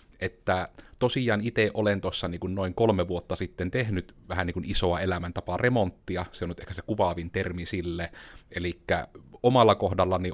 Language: Finnish